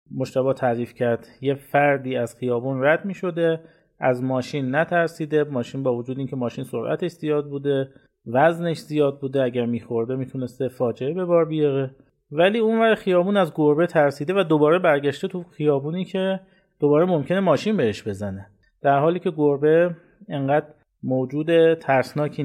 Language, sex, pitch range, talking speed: Persian, male, 130-175 Hz, 145 wpm